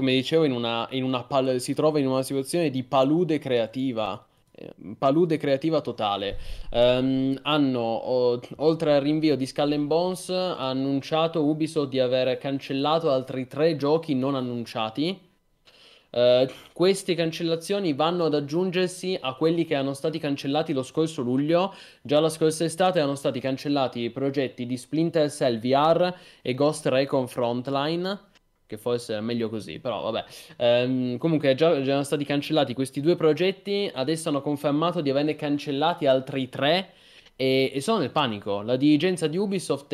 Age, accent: 20-39, native